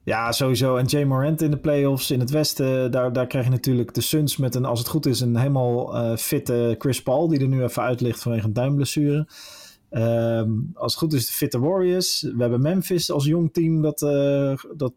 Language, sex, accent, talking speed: Dutch, male, Dutch, 215 wpm